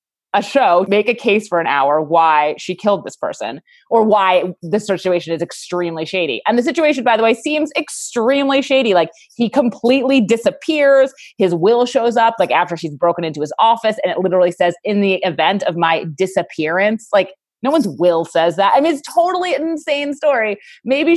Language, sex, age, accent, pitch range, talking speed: English, female, 30-49, American, 180-270 Hz, 195 wpm